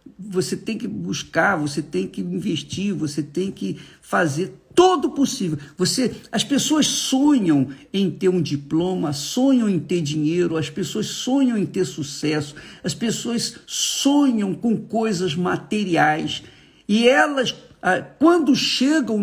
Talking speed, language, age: 130 wpm, Portuguese, 50-69